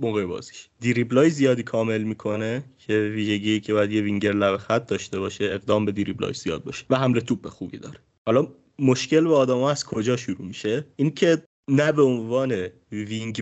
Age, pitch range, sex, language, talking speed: 30-49, 105-130 Hz, male, Persian, 180 wpm